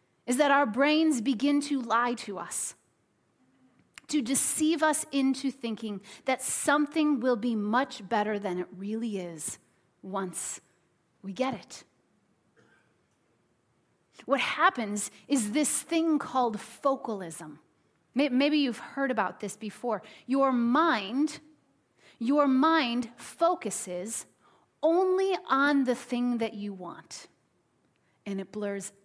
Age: 30-49